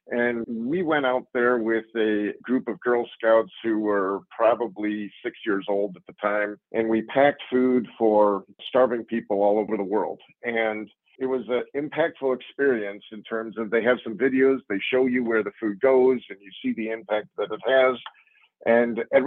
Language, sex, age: English, male, 50-69